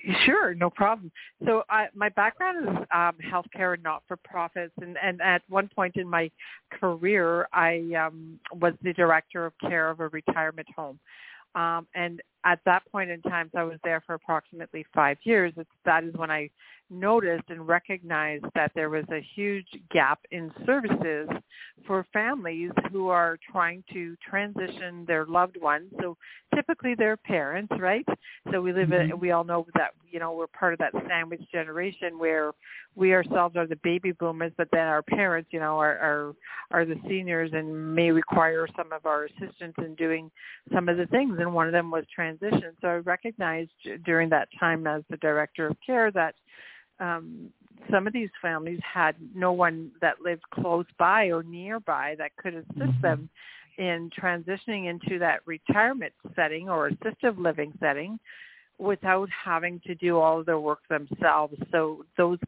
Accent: American